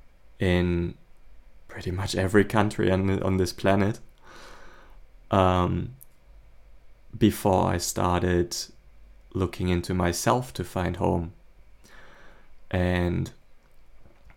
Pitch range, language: 90-100 Hz, English